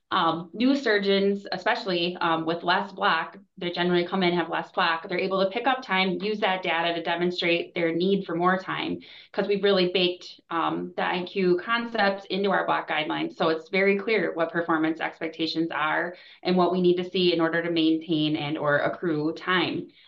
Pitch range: 160-180 Hz